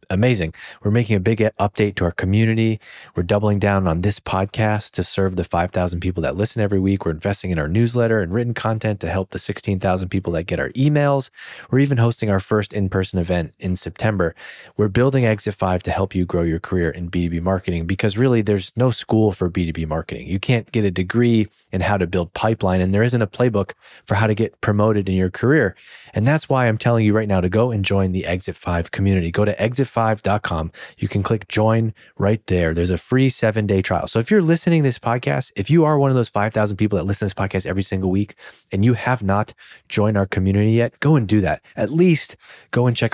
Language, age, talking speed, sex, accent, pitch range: English, 30-49, 230 wpm, male, American, 95-115 Hz